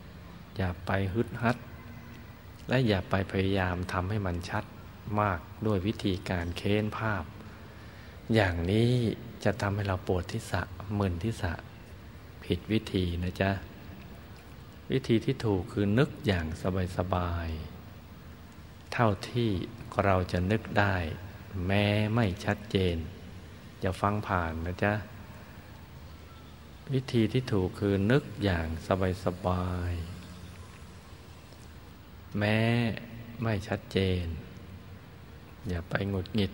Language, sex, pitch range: Thai, male, 90-105 Hz